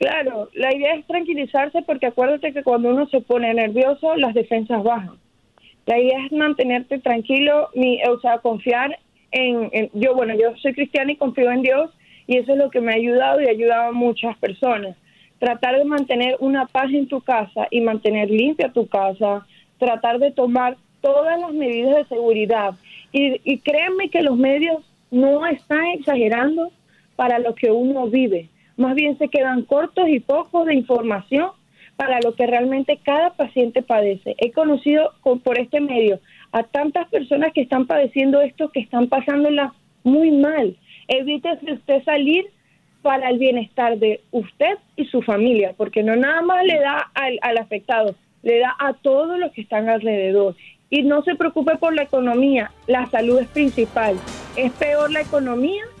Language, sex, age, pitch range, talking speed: Spanish, female, 30-49, 235-290 Hz, 170 wpm